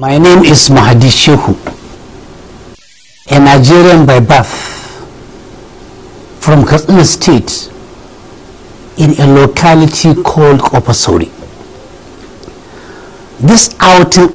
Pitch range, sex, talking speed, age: 135-185 Hz, male, 80 wpm, 60-79